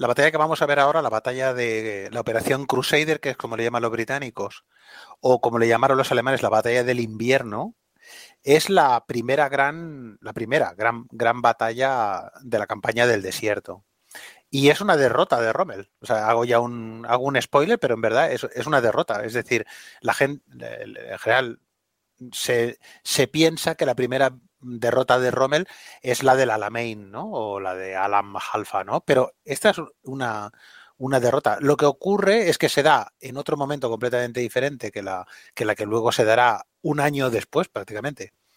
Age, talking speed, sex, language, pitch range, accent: 30-49, 185 wpm, male, Spanish, 115-145 Hz, Spanish